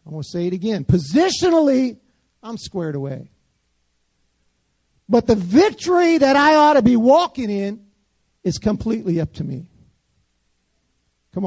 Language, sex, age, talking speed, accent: English, male, 50-69, 135 wpm, American